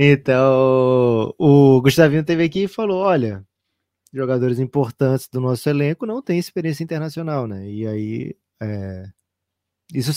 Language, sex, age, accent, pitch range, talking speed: Portuguese, male, 20-39, Brazilian, 105-140 Hz, 130 wpm